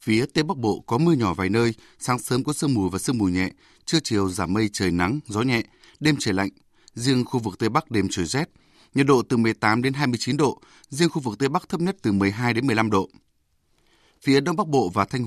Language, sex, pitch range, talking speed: Vietnamese, male, 110-140 Hz, 245 wpm